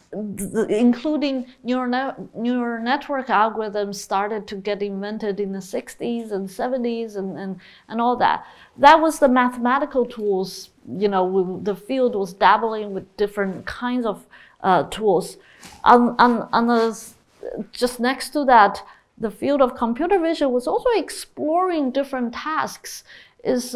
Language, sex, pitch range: English, female, 205-280 Hz